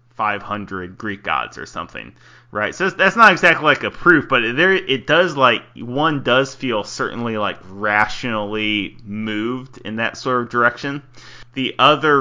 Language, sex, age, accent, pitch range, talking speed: English, male, 30-49, American, 115-130 Hz, 150 wpm